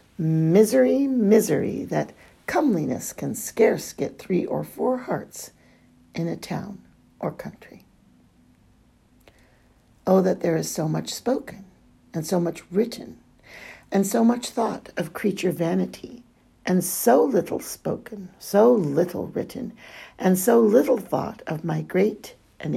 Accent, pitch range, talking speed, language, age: American, 160-215 Hz, 130 wpm, English, 60-79